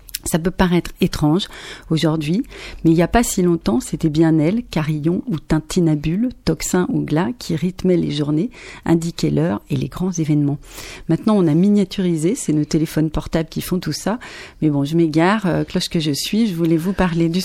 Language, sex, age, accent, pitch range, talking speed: French, female, 40-59, French, 155-195 Hz, 195 wpm